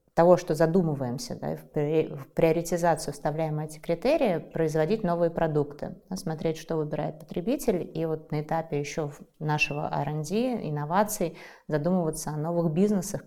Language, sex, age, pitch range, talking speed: Russian, female, 20-39, 150-180 Hz, 130 wpm